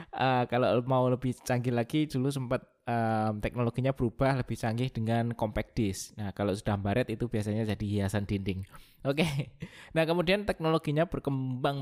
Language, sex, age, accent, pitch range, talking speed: Indonesian, male, 20-39, native, 115-140 Hz, 155 wpm